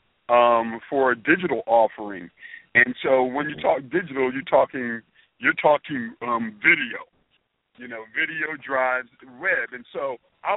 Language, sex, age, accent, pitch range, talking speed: English, male, 50-69, American, 120-145 Hz, 140 wpm